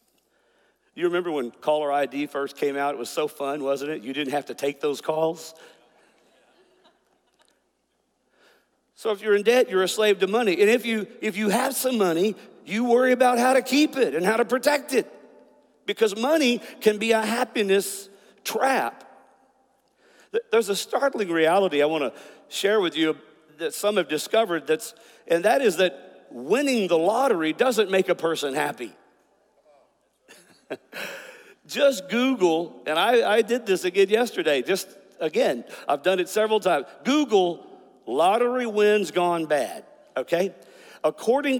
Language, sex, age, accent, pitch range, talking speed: English, male, 50-69, American, 160-255 Hz, 155 wpm